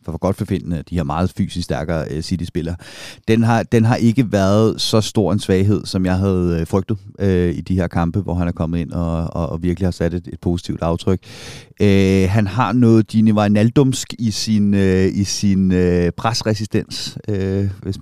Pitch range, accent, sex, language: 90-110 Hz, native, male, Danish